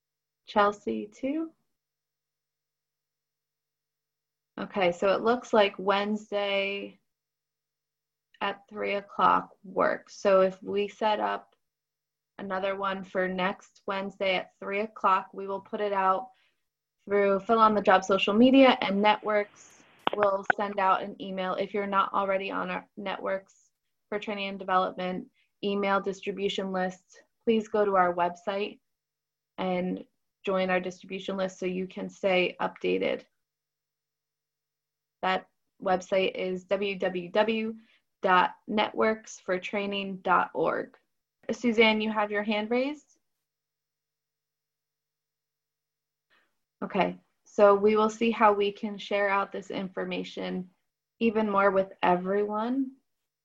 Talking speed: 110 wpm